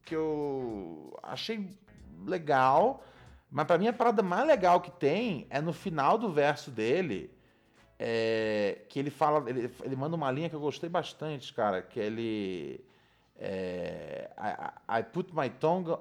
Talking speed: 145 wpm